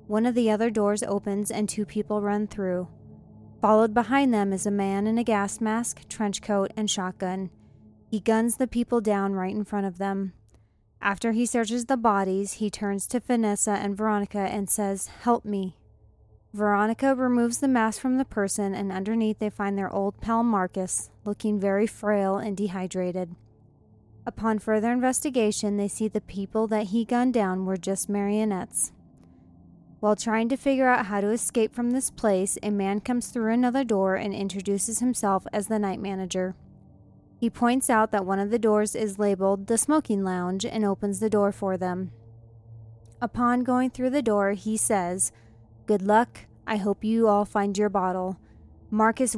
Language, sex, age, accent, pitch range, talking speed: English, female, 20-39, American, 195-225 Hz, 175 wpm